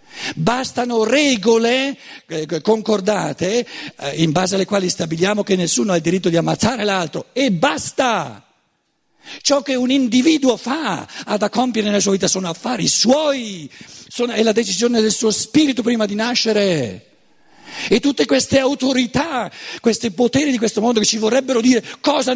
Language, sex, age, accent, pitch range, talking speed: Italian, male, 50-69, native, 195-260 Hz, 145 wpm